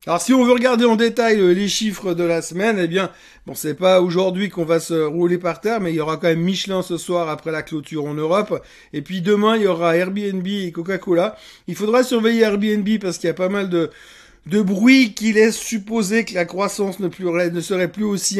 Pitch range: 165-200 Hz